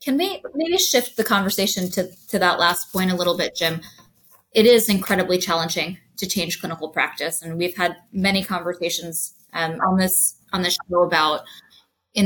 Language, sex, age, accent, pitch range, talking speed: English, female, 20-39, American, 165-190 Hz, 175 wpm